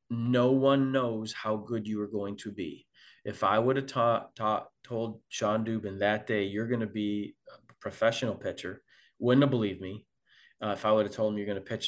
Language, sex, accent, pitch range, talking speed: English, male, American, 105-125 Hz, 215 wpm